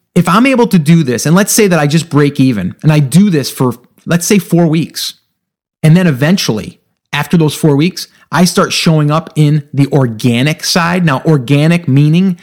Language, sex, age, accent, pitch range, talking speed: English, male, 30-49, American, 150-190 Hz, 200 wpm